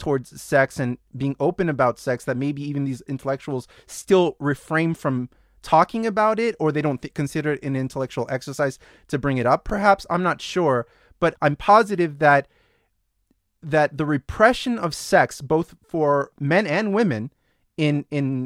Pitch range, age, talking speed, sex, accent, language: 140-170 Hz, 30-49, 165 wpm, male, American, English